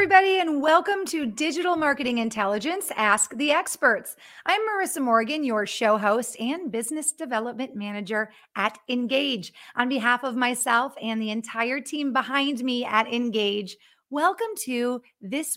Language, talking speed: English, 145 wpm